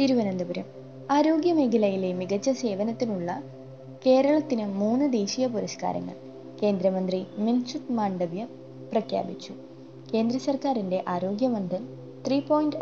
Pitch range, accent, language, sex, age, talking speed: 180-245 Hz, native, Malayalam, female, 20-39, 85 wpm